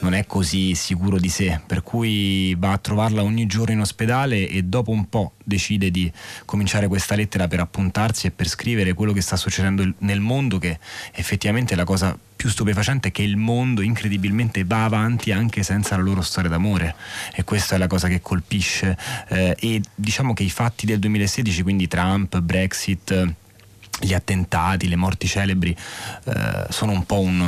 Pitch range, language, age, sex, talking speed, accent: 90-105 Hz, Italian, 30-49, male, 175 wpm, native